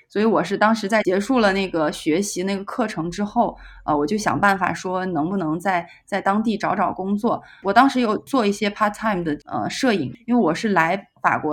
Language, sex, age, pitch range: Chinese, female, 20-39, 175-220 Hz